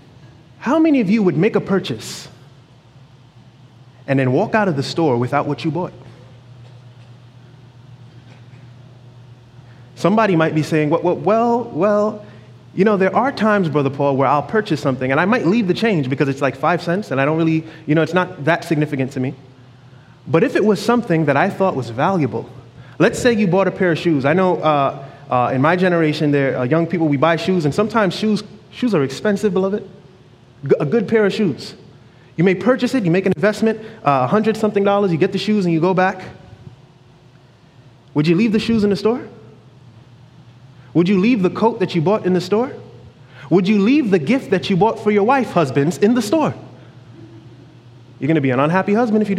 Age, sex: 20-39, male